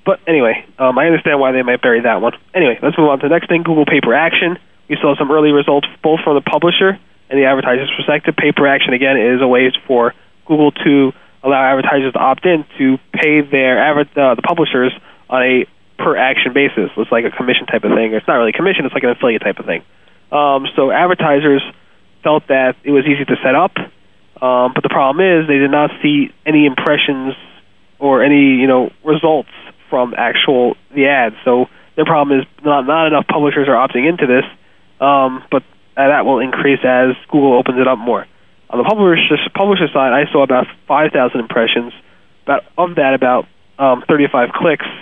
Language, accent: English, American